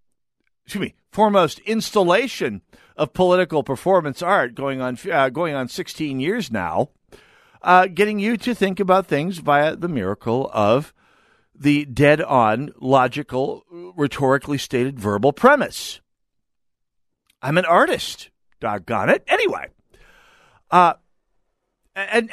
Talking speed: 115 wpm